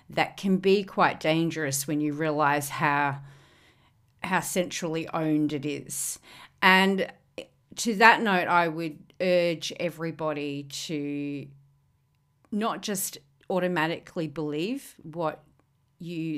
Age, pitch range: 40-59, 150-180 Hz